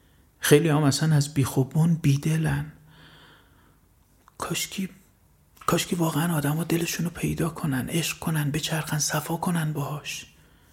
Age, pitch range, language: 30-49, 125-160 Hz, Persian